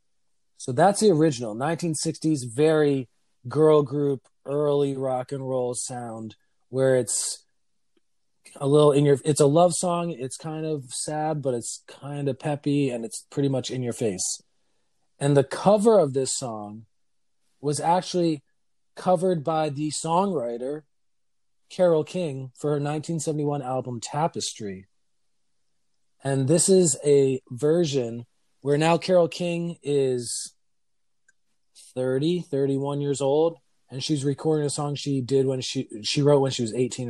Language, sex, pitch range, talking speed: English, male, 125-155 Hz, 140 wpm